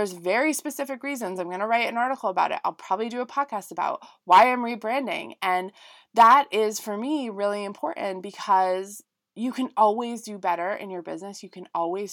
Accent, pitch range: American, 185-260 Hz